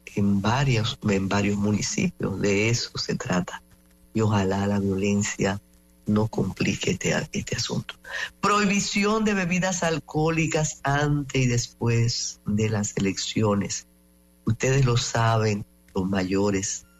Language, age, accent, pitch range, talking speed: English, 50-69, American, 95-135 Hz, 115 wpm